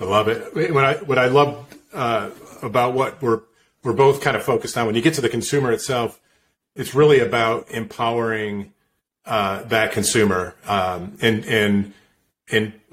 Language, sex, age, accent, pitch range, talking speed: English, male, 40-59, American, 110-130 Hz, 165 wpm